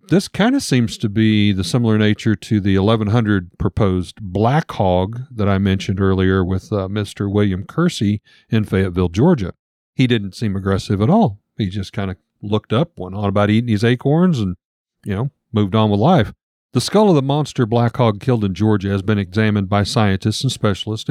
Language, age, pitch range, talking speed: English, 40-59, 100-130 Hz, 195 wpm